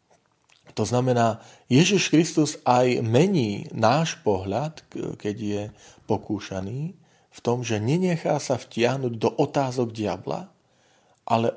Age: 40-59